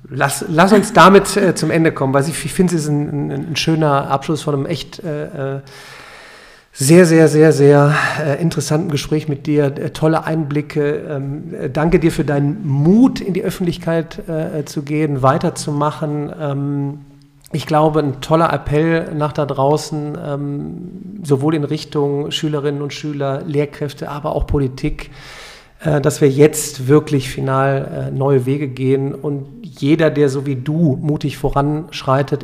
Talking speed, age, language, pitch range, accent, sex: 155 wpm, 50-69, German, 140-155 Hz, German, male